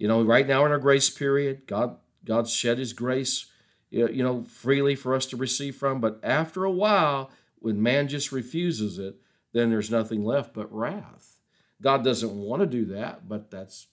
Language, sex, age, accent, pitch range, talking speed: English, male, 50-69, American, 110-135 Hz, 190 wpm